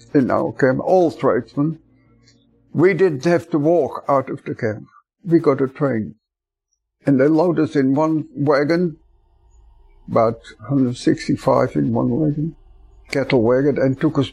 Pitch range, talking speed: 125-160 Hz, 145 wpm